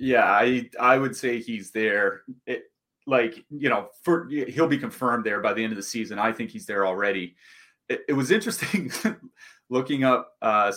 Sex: male